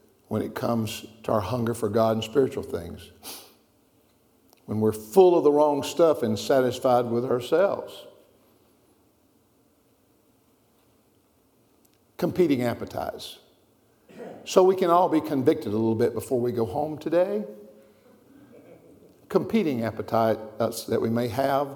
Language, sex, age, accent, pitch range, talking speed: English, male, 60-79, American, 115-150 Hz, 120 wpm